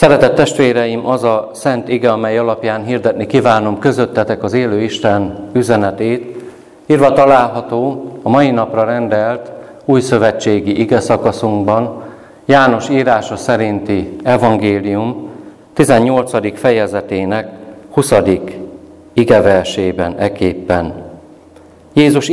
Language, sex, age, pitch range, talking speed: Hungarian, male, 50-69, 105-130 Hz, 90 wpm